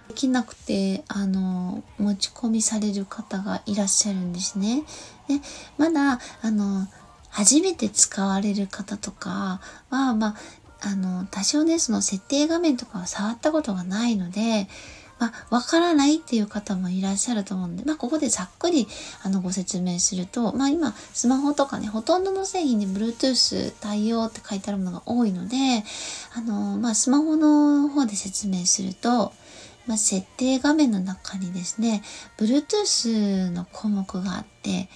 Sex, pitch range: female, 195-265 Hz